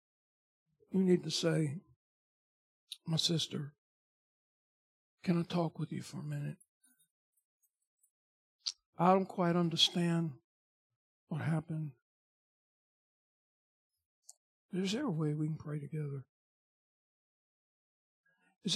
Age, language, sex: 60-79, English, male